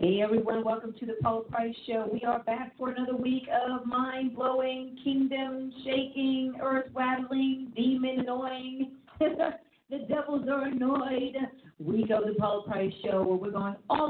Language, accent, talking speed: English, American, 150 wpm